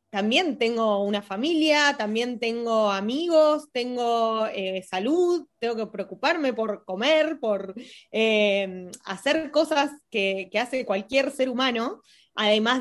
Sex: female